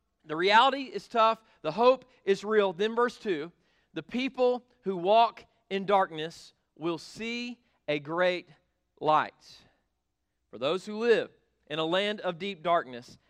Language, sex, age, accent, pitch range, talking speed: English, male, 40-59, American, 155-190 Hz, 145 wpm